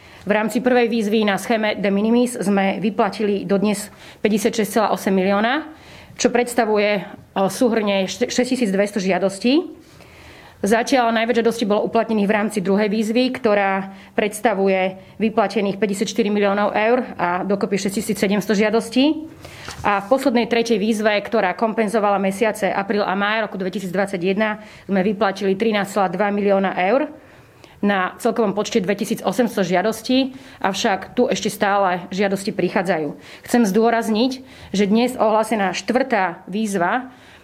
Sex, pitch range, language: female, 195-230 Hz, English